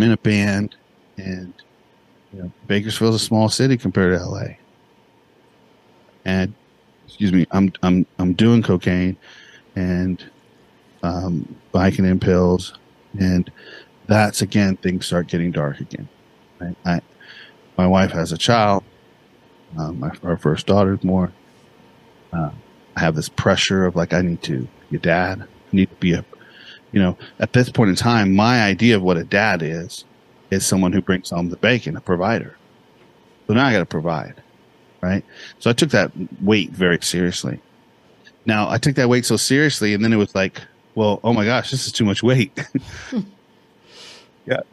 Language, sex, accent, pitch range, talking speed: English, male, American, 90-115 Hz, 165 wpm